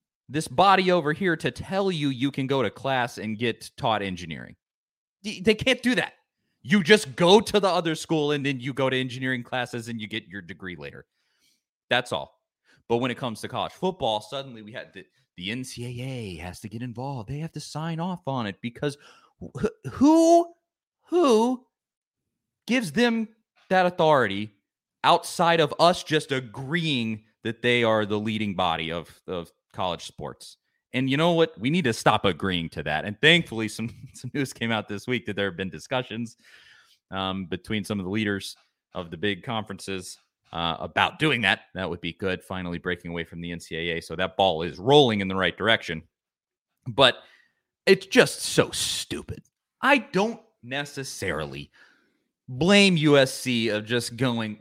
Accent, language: American, English